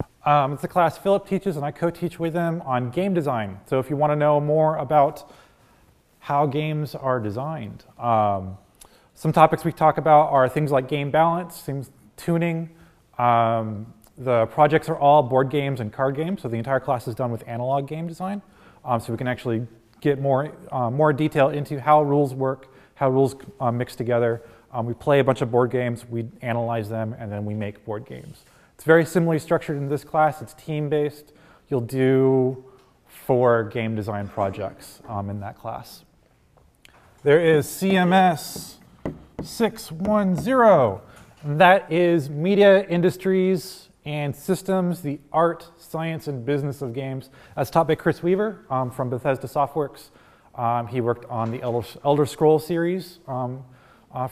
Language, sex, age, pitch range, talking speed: English, male, 30-49, 125-165 Hz, 165 wpm